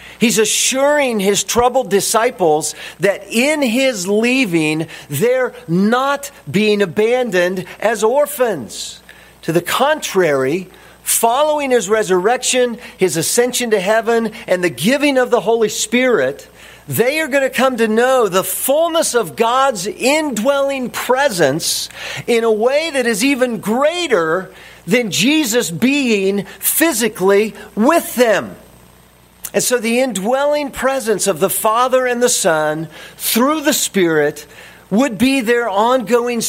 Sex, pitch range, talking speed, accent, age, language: male, 185-255 Hz, 125 wpm, American, 50-69, English